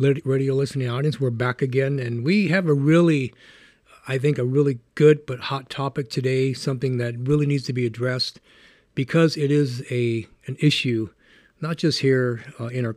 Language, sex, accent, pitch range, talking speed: English, male, American, 115-135 Hz, 180 wpm